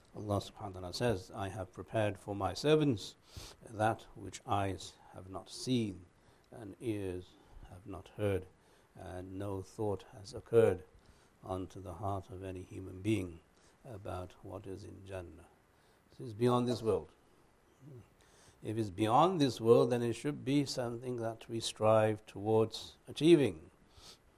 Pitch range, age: 95-115 Hz, 60-79